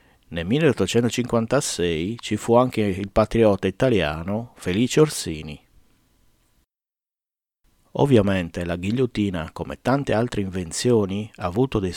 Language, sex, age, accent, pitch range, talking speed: Italian, male, 50-69, native, 85-120 Hz, 100 wpm